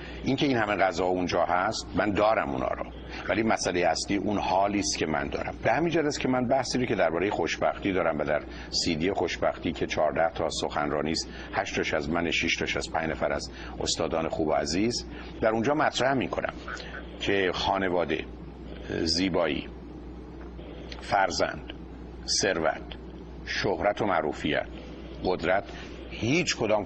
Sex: male